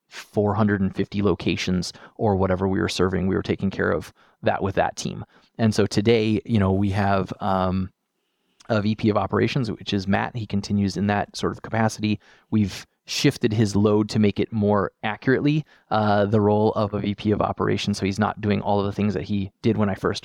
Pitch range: 100-110 Hz